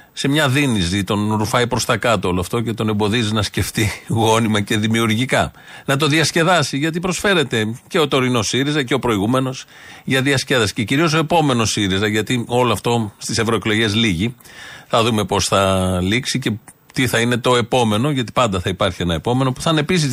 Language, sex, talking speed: Greek, male, 190 wpm